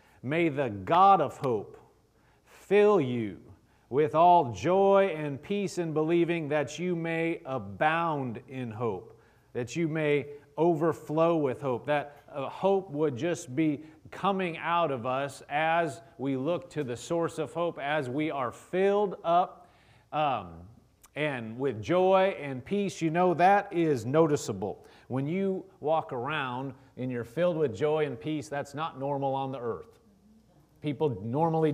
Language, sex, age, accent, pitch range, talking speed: English, male, 40-59, American, 130-170 Hz, 150 wpm